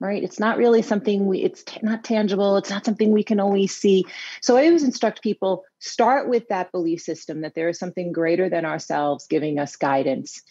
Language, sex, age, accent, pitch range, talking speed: English, female, 30-49, American, 160-210 Hz, 205 wpm